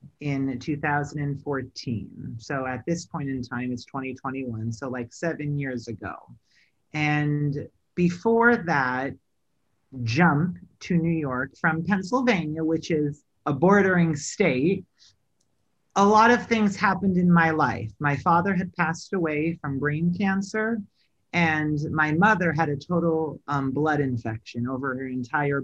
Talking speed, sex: 135 wpm, male